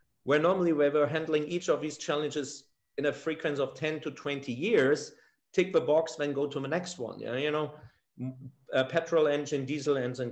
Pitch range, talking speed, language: 130-160 Hz, 205 wpm, English